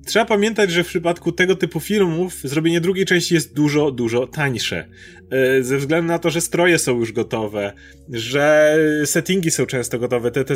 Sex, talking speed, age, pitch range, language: male, 175 wpm, 30-49, 130-170 Hz, Polish